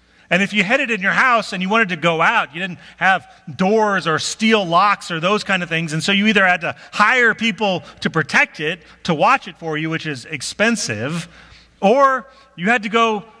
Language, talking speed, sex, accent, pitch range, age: English, 225 wpm, male, American, 140-195 Hz, 40-59